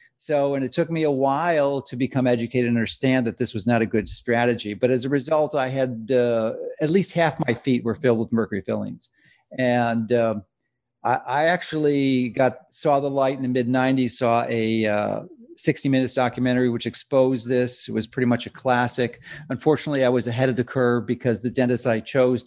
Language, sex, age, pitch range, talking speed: English, male, 50-69, 120-145 Hz, 205 wpm